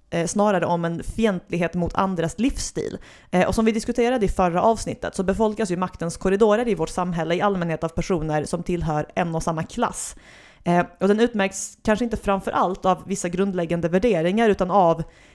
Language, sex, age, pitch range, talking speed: English, female, 30-49, 170-205 Hz, 170 wpm